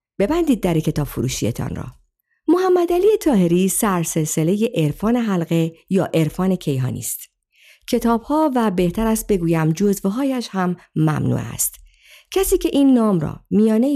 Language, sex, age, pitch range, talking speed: Persian, female, 50-69, 150-230 Hz, 135 wpm